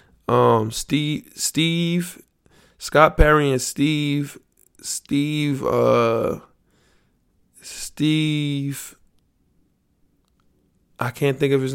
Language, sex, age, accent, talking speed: English, male, 20-39, American, 75 wpm